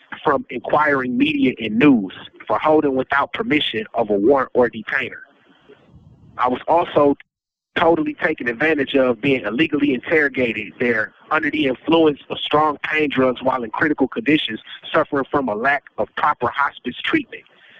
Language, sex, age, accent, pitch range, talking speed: English, male, 30-49, American, 130-165 Hz, 150 wpm